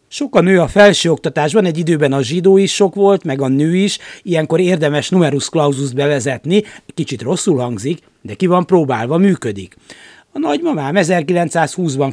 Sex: male